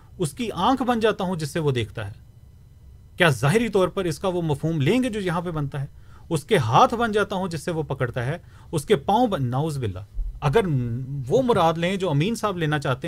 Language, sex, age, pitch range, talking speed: Urdu, male, 30-49, 125-170 Hz, 235 wpm